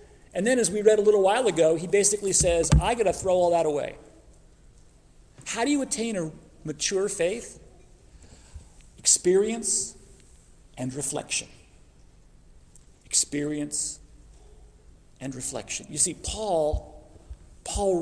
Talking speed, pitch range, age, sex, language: 120 wpm, 130-195 Hz, 40-59, male, English